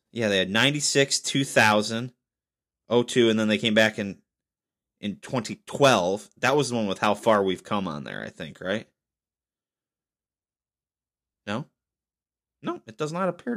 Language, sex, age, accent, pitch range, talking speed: English, male, 30-49, American, 105-145 Hz, 170 wpm